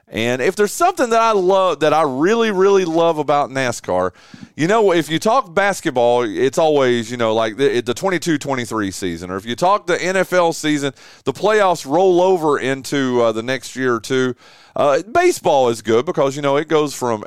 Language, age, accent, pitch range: English, 30-49, American, 95-155 Hz